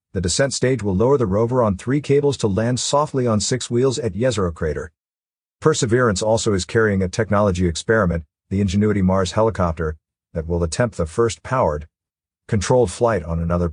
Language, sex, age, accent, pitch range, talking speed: English, male, 50-69, American, 95-125 Hz, 175 wpm